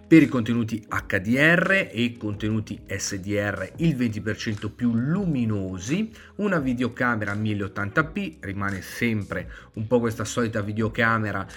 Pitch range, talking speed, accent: 100-145 Hz, 110 wpm, native